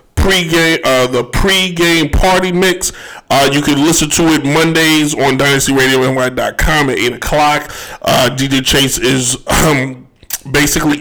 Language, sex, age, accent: English, male, 20-39, American